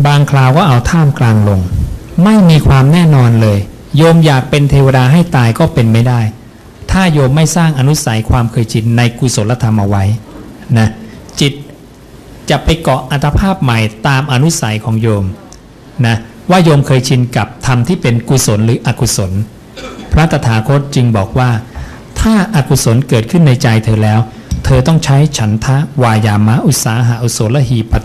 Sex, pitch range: male, 110-140 Hz